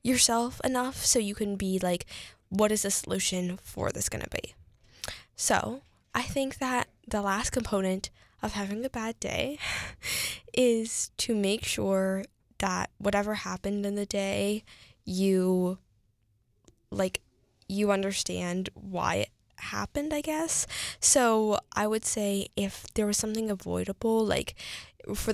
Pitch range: 185-225 Hz